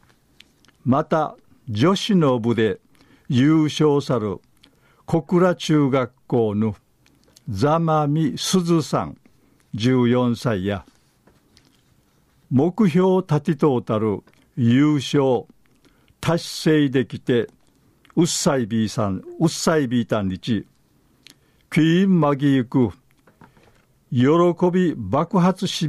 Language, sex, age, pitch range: Japanese, male, 50-69, 115-160 Hz